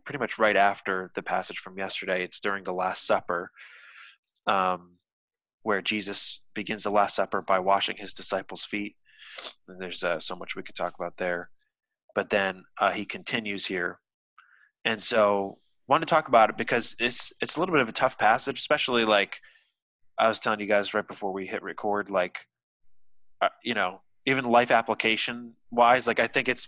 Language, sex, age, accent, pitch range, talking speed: English, male, 20-39, American, 95-115 Hz, 185 wpm